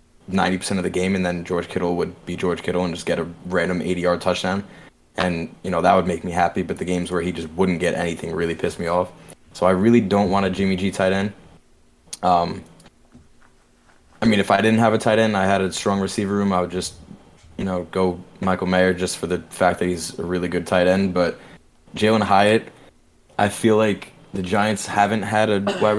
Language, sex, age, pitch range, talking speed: English, male, 20-39, 90-100 Hz, 230 wpm